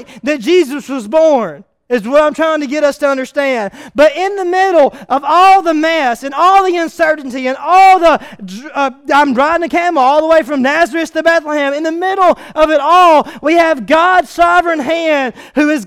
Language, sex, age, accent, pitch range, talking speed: English, male, 30-49, American, 185-295 Hz, 200 wpm